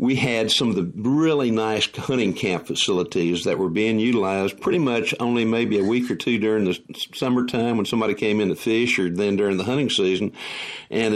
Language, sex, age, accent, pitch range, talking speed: English, male, 60-79, American, 100-120 Hz, 205 wpm